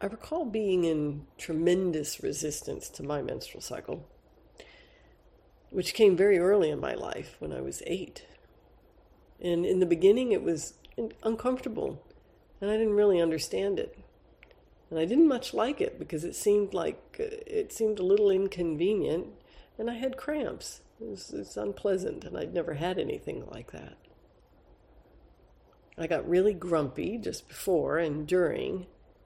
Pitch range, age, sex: 165-260 Hz, 50-69, female